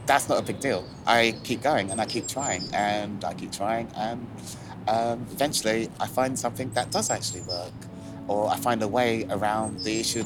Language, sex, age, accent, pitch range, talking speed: English, male, 30-49, British, 105-130 Hz, 200 wpm